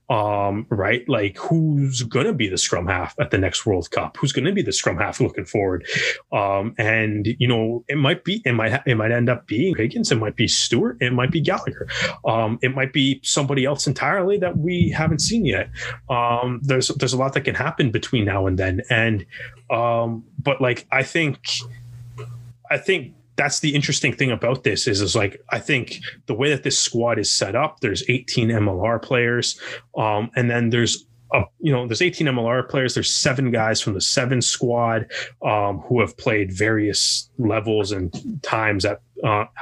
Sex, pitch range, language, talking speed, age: male, 115-140 Hz, English, 195 wpm, 20-39